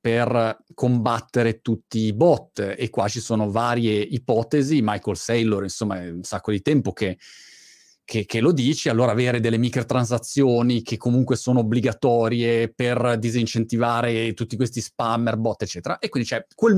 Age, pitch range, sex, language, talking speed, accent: 30-49, 115-150 Hz, male, Italian, 155 wpm, native